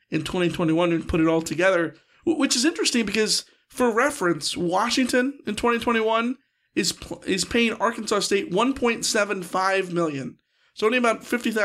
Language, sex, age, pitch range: English, male, 40-59, 185-230 Hz